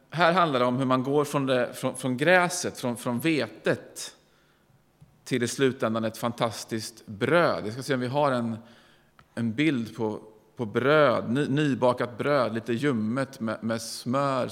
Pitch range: 120-145 Hz